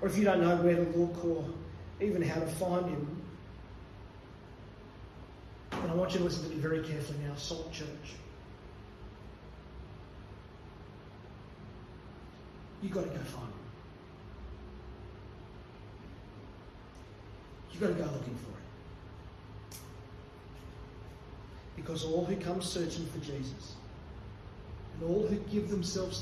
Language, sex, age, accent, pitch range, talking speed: English, male, 30-49, Australian, 100-160 Hz, 120 wpm